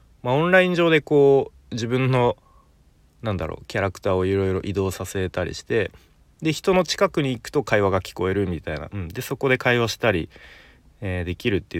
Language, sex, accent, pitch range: Japanese, male, native, 85-125 Hz